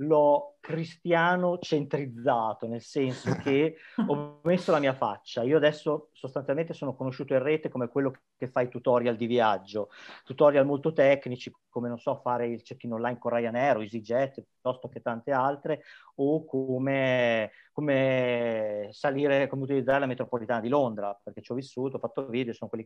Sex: male